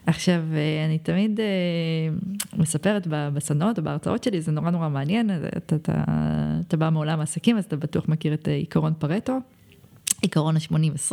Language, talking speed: Hebrew, 140 wpm